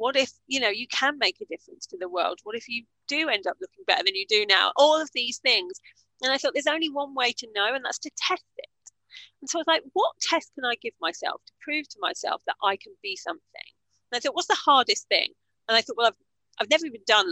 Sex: female